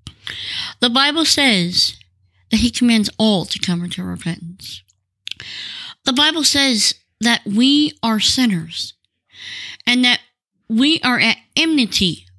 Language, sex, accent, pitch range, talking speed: English, female, American, 180-240 Hz, 115 wpm